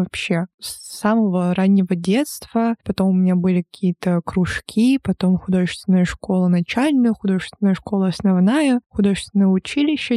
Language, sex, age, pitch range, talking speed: Russian, female, 20-39, 185-220 Hz, 120 wpm